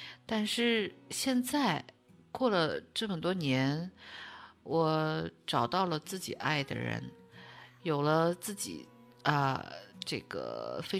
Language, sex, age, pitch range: Chinese, female, 50-69, 145-210 Hz